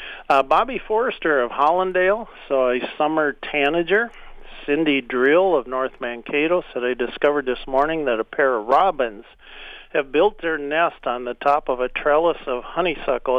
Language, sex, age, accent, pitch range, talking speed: English, male, 50-69, American, 120-150 Hz, 160 wpm